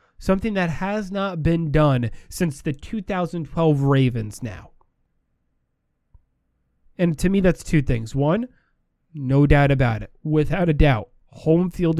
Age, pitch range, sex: 20-39, 125-175 Hz, male